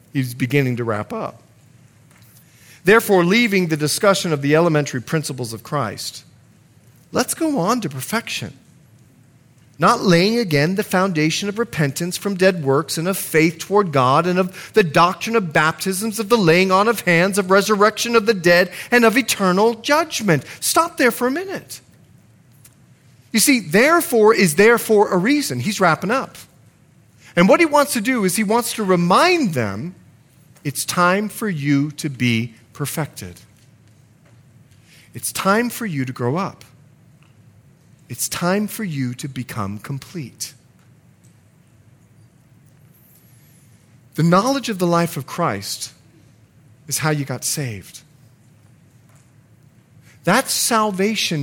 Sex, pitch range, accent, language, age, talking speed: male, 130-195 Hz, American, English, 40-59, 140 wpm